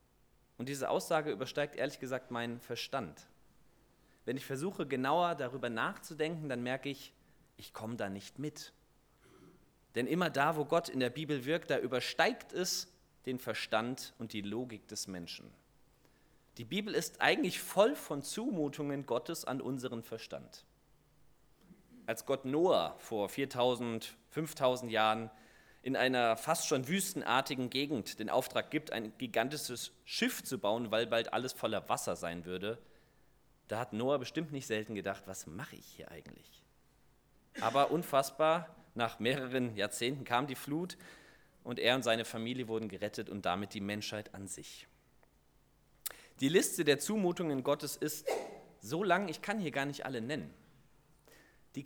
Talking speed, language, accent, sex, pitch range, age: 150 wpm, German, German, male, 115-150 Hz, 30-49